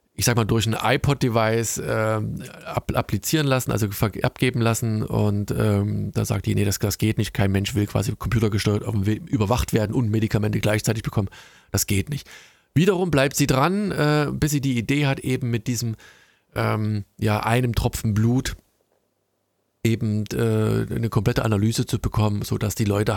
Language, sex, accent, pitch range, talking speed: German, male, German, 110-135 Hz, 175 wpm